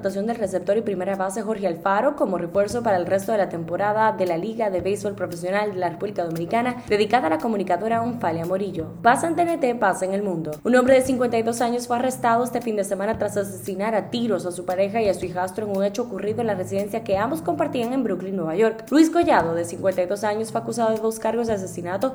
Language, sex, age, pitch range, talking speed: Spanish, female, 10-29, 185-235 Hz, 235 wpm